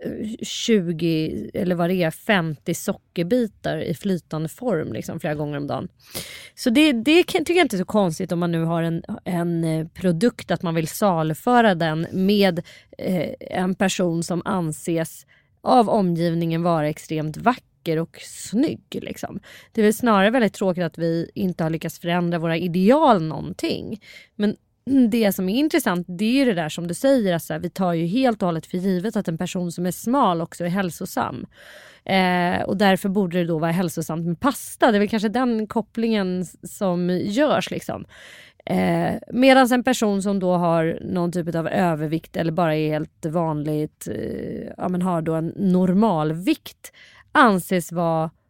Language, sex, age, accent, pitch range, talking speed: English, female, 30-49, Swedish, 165-215 Hz, 175 wpm